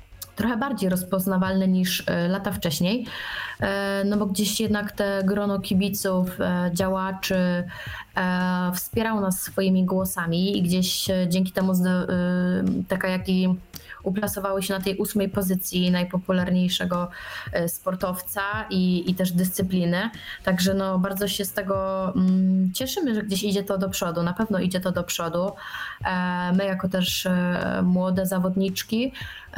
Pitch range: 185-210 Hz